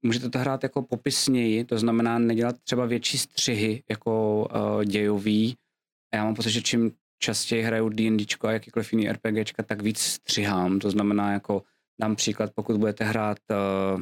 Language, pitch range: Czech, 100-115 Hz